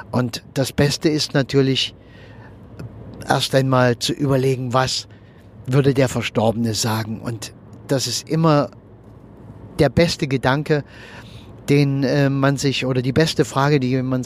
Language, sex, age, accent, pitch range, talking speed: German, male, 50-69, German, 115-135 Hz, 130 wpm